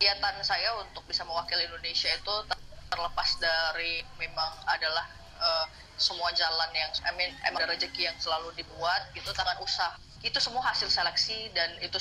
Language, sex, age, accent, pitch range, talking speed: Indonesian, female, 20-39, native, 165-190 Hz, 160 wpm